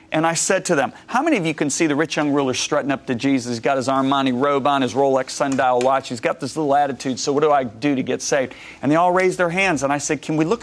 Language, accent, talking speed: English, American, 305 wpm